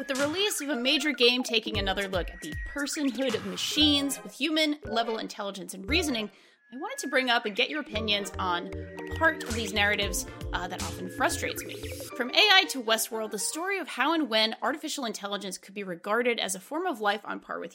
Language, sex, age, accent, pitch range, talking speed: English, female, 30-49, American, 205-295 Hz, 215 wpm